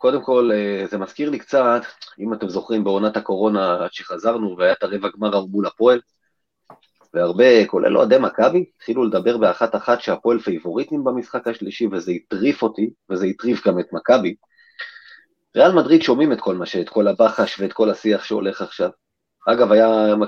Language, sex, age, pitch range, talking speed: Hebrew, male, 30-49, 100-150 Hz, 155 wpm